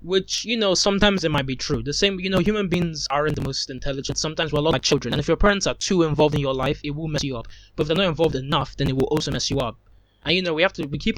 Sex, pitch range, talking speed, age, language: male, 135-165 Hz, 320 wpm, 20-39, English